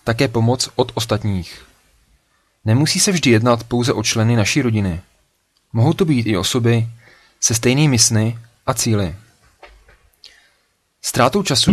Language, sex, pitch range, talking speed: Czech, male, 110-130 Hz, 130 wpm